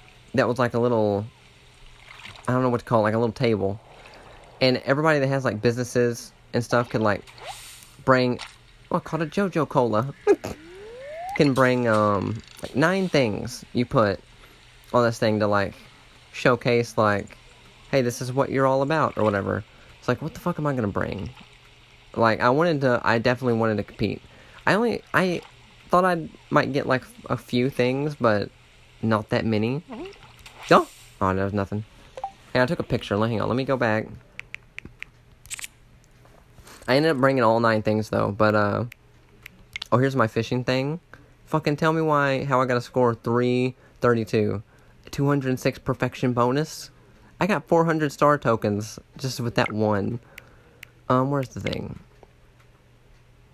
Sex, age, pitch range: male, 20-39, 110-135 Hz